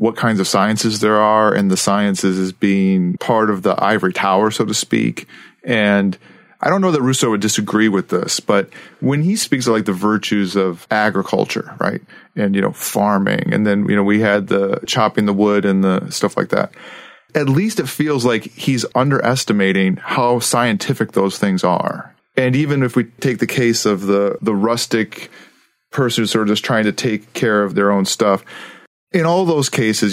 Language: English